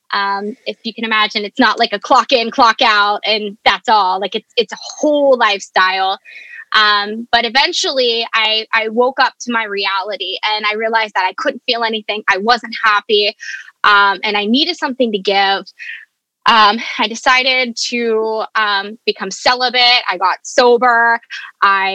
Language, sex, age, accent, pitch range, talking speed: English, female, 20-39, American, 210-255 Hz, 165 wpm